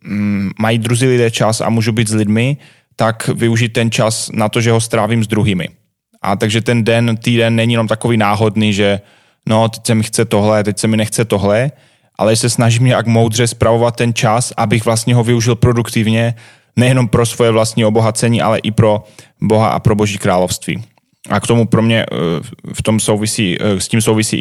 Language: Slovak